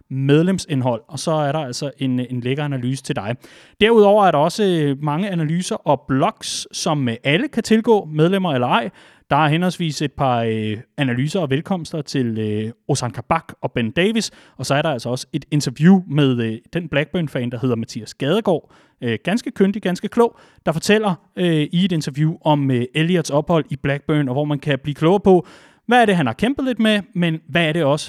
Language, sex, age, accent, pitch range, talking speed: Danish, male, 30-49, native, 145-195 Hz, 190 wpm